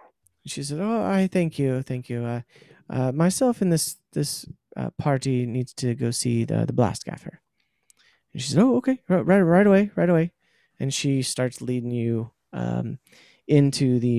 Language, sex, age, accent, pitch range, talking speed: English, male, 30-49, American, 120-160 Hz, 180 wpm